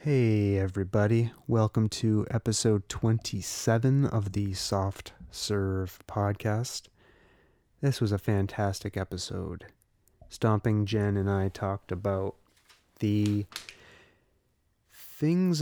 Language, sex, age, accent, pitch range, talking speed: English, male, 30-49, American, 100-115 Hz, 90 wpm